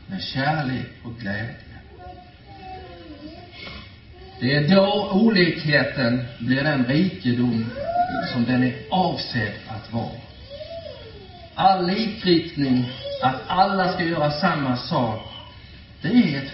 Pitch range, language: 110-155 Hz, Swedish